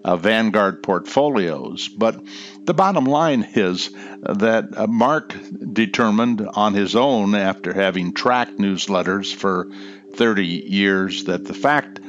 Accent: American